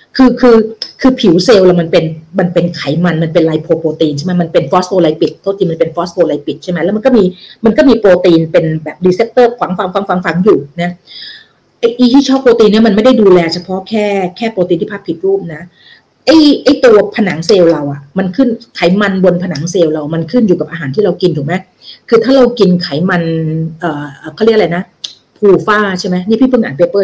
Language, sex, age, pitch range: Thai, female, 30-49, 165-215 Hz